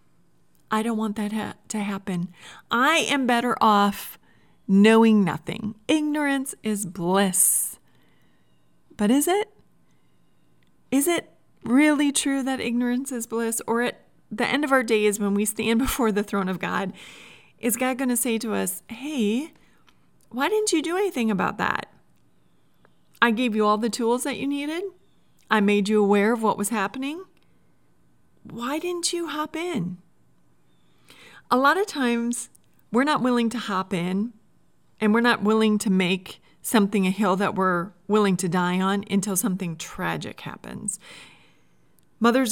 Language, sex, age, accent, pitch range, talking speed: English, female, 30-49, American, 180-240 Hz, 150 wpm